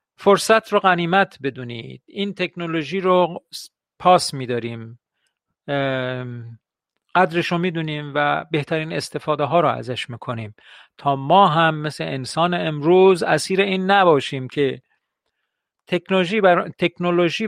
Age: 50-69